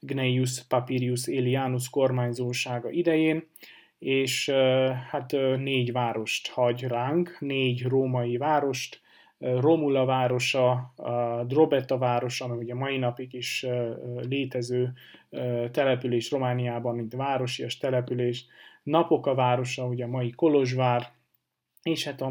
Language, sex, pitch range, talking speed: Hungarian, male, 125-135 Hz, 105 wpm